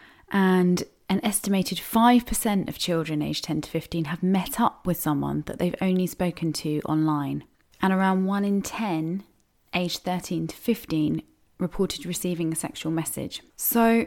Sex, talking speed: female, 155 wpm